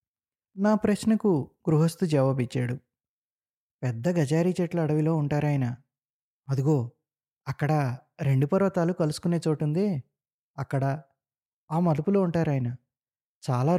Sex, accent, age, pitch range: male, native, 20-39, 125-160 Hz